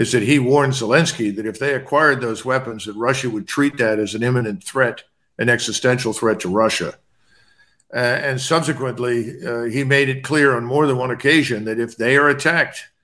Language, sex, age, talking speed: English, male, 50-69, 200 wpm